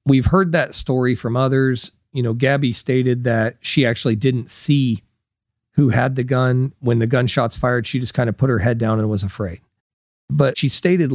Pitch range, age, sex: 120-150 Hz, 40-59, male